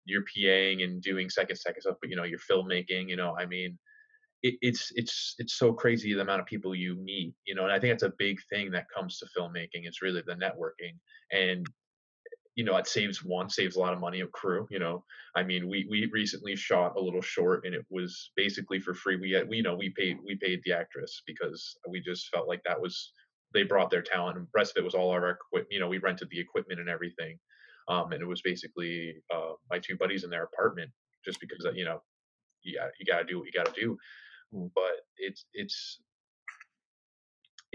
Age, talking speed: 20-39, 225 wpm